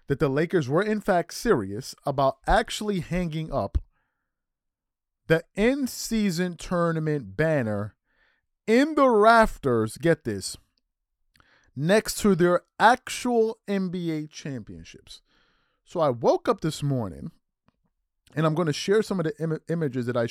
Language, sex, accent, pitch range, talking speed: English, male, American, 125-195 Hz, 125 wpm